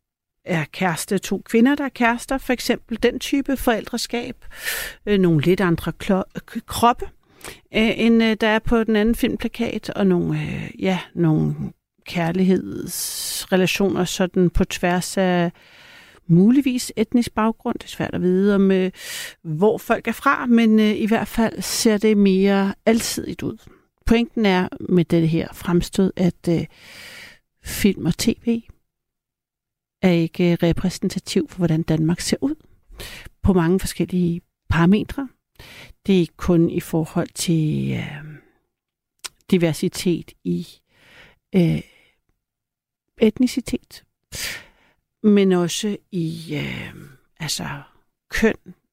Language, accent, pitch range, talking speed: Danish, native, 175-230 Hz, 120 wpm